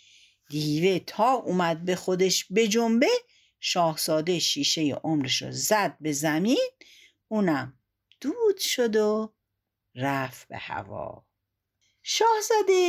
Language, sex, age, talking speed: Persian, female, 60-79, 100 wpm